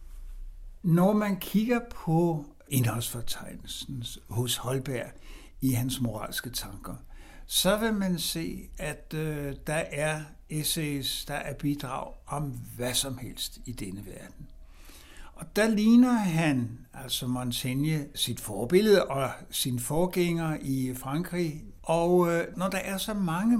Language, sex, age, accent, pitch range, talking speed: Danish, male, 60-79, native, 125-175 Hz, 120 wpm